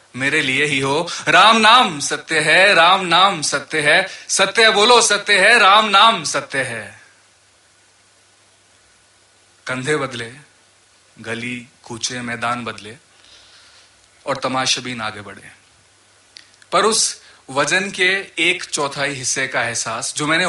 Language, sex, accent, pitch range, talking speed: Hindi, male, native, 115-165 Hz, 125 wpm